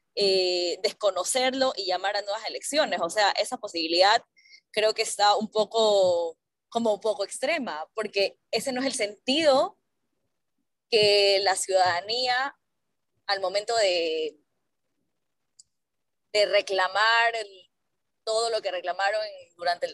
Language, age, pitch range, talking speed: Spanish, 20-39, 195-255 Hz, 125 wpm